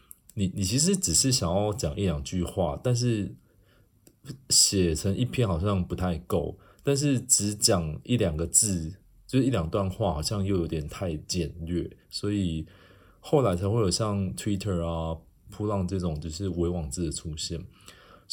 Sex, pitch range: male, 85-110 Hz